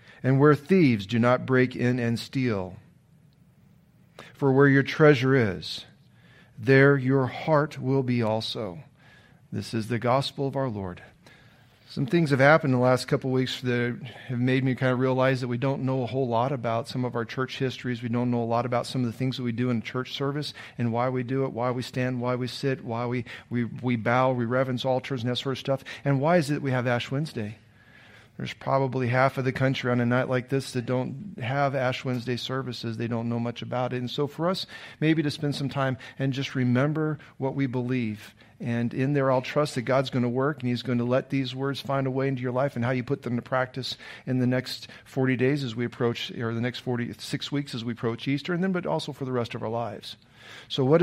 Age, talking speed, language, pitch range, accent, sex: 40-59, 240 wpm, English, 120-140 Hz, American, male